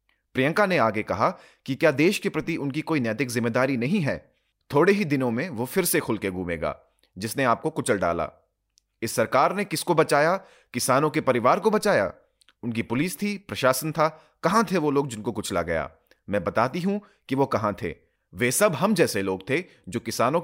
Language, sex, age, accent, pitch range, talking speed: Hindi, male, 30-49, native, 105-160 Hz, 130 wpm